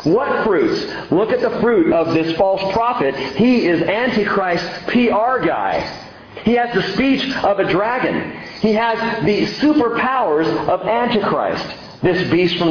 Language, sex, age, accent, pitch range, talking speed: English, male, 40-59, American, 150-225 Hz, 145 wpm